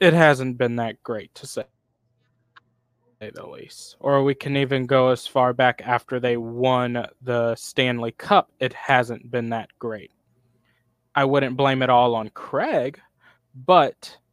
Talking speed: 150 wpm